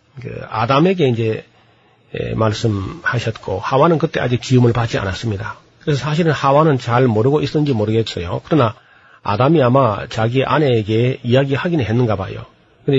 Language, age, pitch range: Korean, 40-59, 115-145 Hz